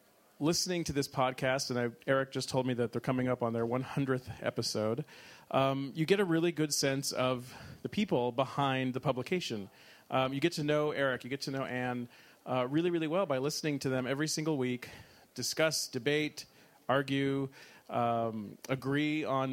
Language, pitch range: English, 120-145 Hz